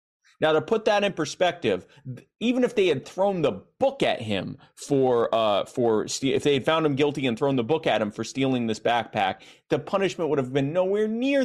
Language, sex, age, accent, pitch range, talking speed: English, male, 30-49, American, 115-160 Hz, 210 wpm